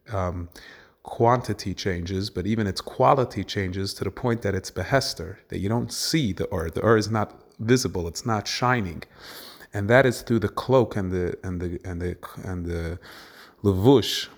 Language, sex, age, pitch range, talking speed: English, male, 30-49, 95-115 Hz, 170 wpm